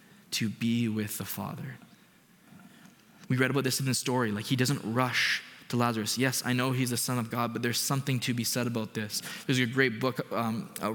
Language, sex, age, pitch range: English, male, 20-39, 120-160 Hz